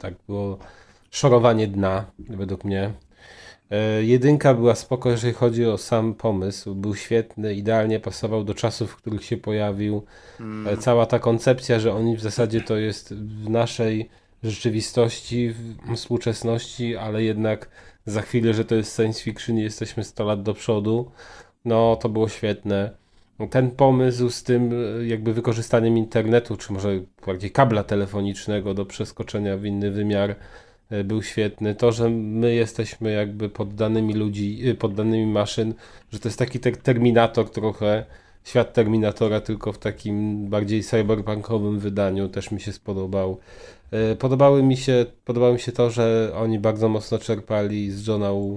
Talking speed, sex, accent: 145 wpm, male, native